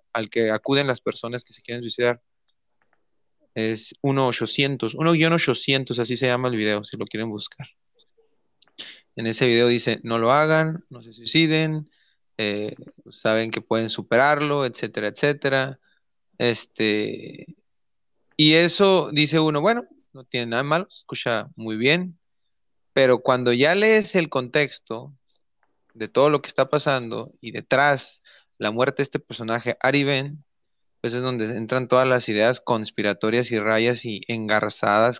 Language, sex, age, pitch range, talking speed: Spanish, male, 30-49, 115-145 Hz, 140 wpm